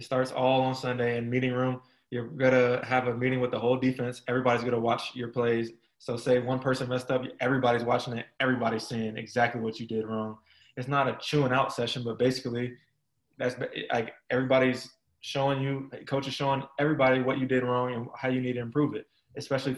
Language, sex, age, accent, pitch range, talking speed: English, male, 20-39, American, 120-130 Hz, 210 wpm